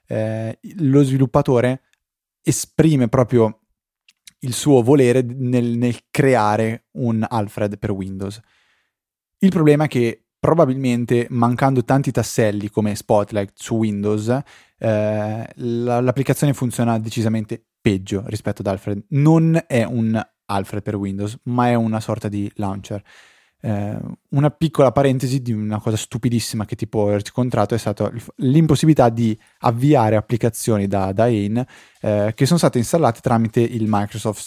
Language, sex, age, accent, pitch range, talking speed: Italian, male, 20-39, native, 105-130 Hz, 130 wpm